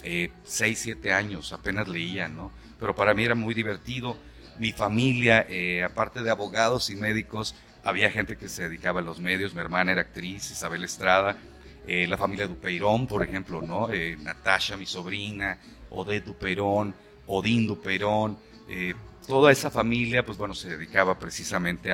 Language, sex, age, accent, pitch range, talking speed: Spanish, male, 40-59, Mexican, 90-115 Hz, 160 wpm